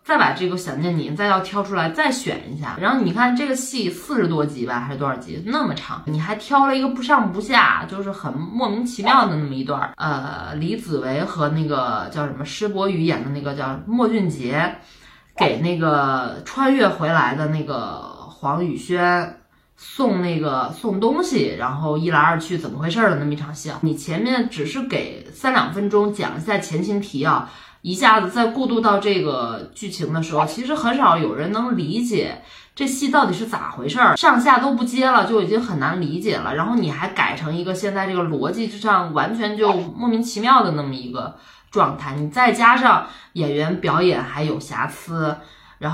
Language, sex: Chinese, female